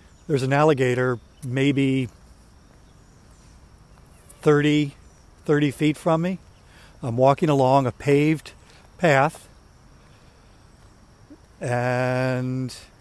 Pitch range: 115-145 Hz